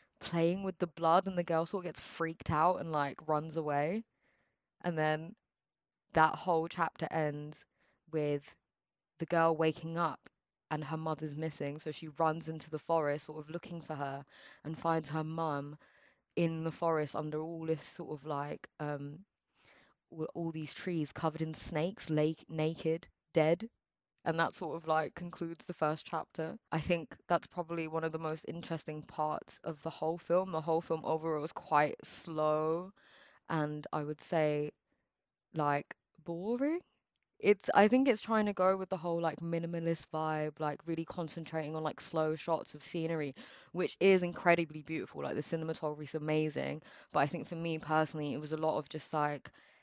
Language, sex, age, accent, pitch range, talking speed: English, female, 20-39, British, 155-170 Hz, 175 wpm